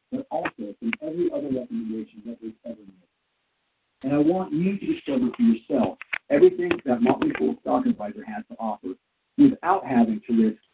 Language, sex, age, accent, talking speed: English, male, 50-69, American, 175 wpm